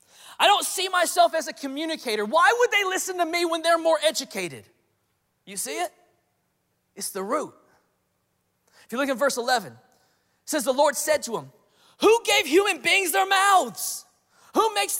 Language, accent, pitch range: English, American, 235-375 Hz